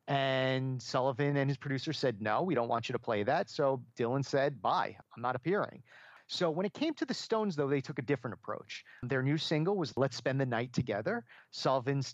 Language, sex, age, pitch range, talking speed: English, male, 40-59, 125-155 Hz, 220 wpm